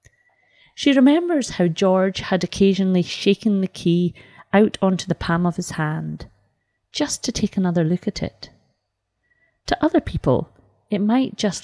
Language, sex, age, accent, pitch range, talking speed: English, female, 30-49, British, 165-210 Hz, 150 wpm